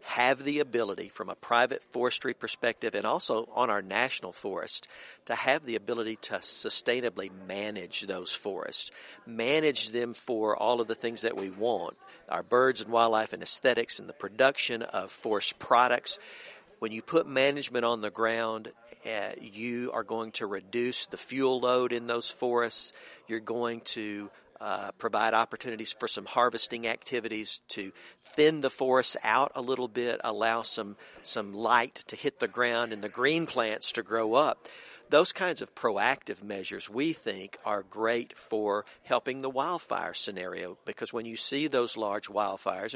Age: 50-69